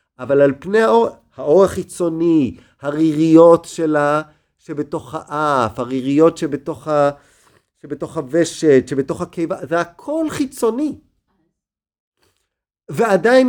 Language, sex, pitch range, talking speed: Hebrew, male, 155-210 Hz, 90 wpm